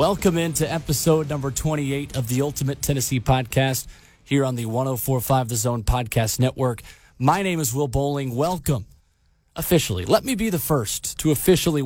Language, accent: English, American